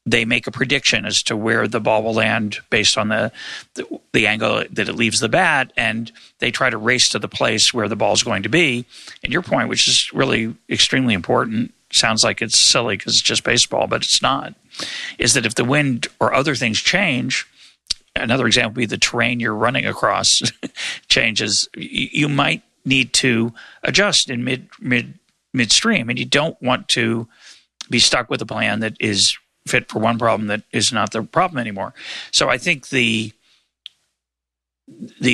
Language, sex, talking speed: English, male, 195 wpm